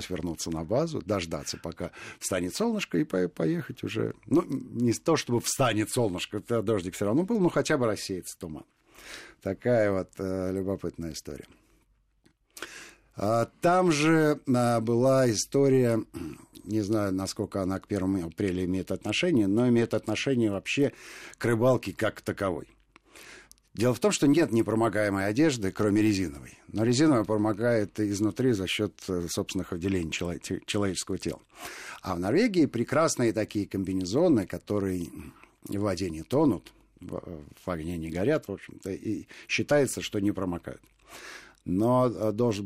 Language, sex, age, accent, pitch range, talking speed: Russian, male, 50-69, native, 95-120 Hz, 135 wpm